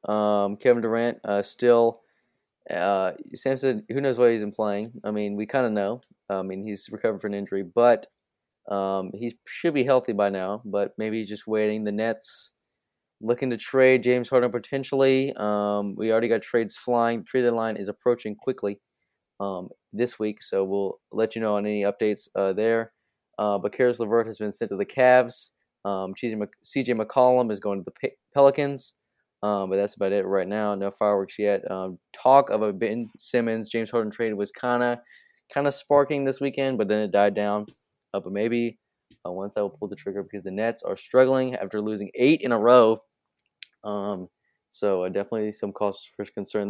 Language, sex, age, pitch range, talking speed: English, male, 20-39, 100-120 Hz, 195 wpm